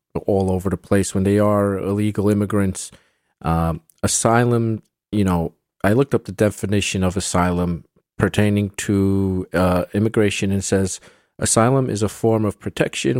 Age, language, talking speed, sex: 40-59, English, 145 wpm, male